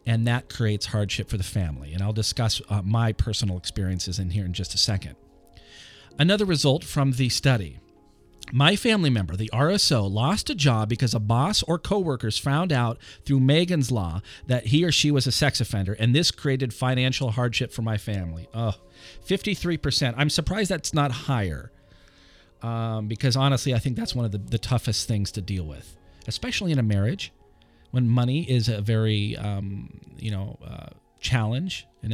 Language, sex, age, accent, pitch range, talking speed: English, male, 40-59, American, 100-140 Hz, 175 wpm